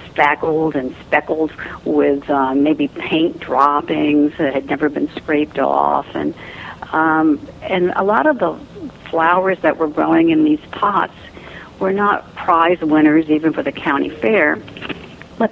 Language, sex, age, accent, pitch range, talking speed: English, female, 60-79, American, 150-180 Hz, 145 wpm